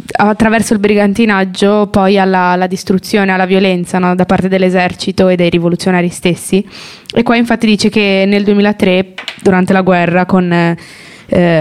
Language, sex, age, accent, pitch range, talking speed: Italian, female, 20-39, native, 185-220 Hz, 150 wpm